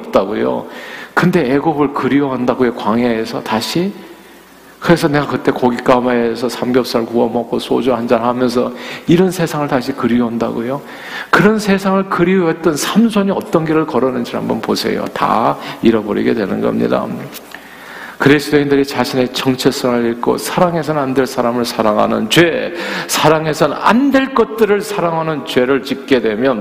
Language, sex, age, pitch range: Korean, male, 50-69, 120-165 Hz